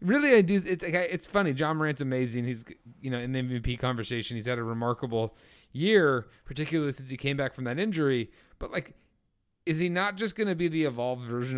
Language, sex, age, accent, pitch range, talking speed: English, male, 30-49, American, 115-140 Hz, 225 wpm